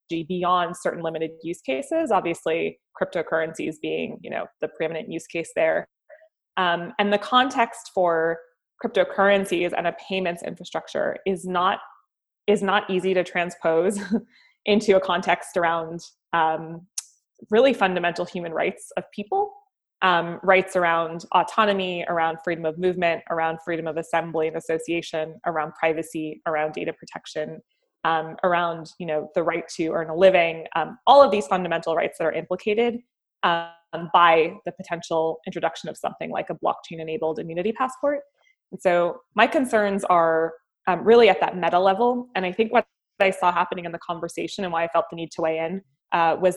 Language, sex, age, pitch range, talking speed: English, female, 20-39, 165-200 Hz, 160 wpm